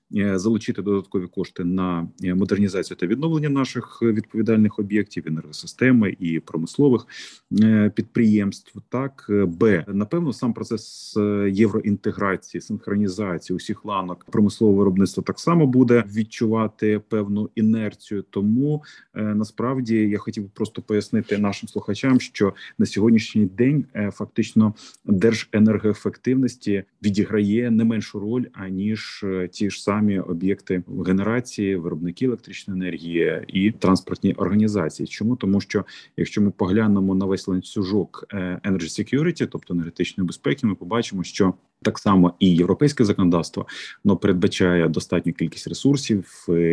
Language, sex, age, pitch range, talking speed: Ukrainian, male, 30-49, 95-115 Hz, 110 wpm